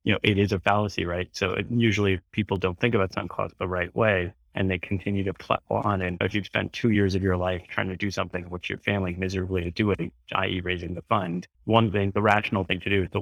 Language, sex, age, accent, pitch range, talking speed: English, male, 30-49, American, 90-100 Hz, 265 wpm